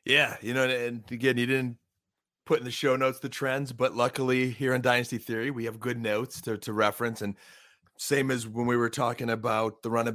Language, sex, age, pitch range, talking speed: English, male, 30-49, 115-135 Hz, 220 wpm